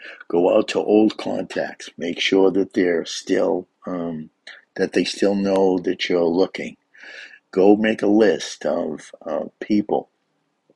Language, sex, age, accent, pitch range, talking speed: English, male, 50-69, American, 95-110 Hz, 140 wpm